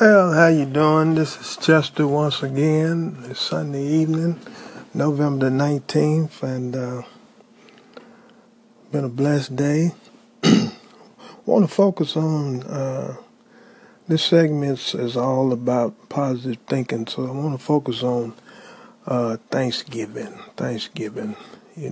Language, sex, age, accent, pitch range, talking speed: English, male, 50-69, American, 125-175 Hz, 120 wpm